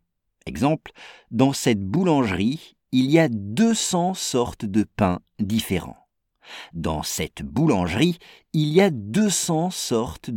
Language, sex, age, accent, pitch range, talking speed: English, male, 50-69, French, 95-145 Hz, 115 wpm